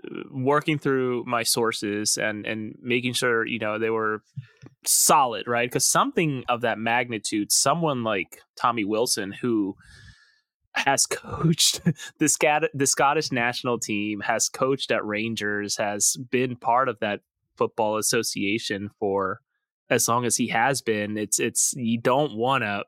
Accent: American